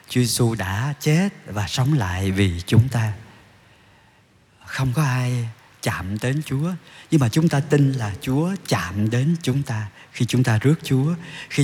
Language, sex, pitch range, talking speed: Vietnamese, male, 105-135 Hz, 165 wpm